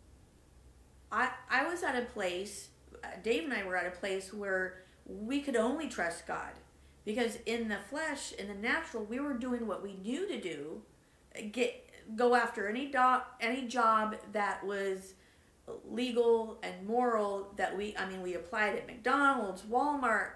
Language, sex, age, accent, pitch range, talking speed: English, female, 40-59, American, 195-245 Hz, 160 wpm